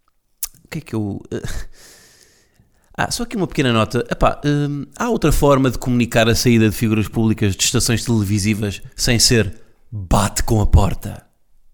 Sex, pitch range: male, 105-130 Hz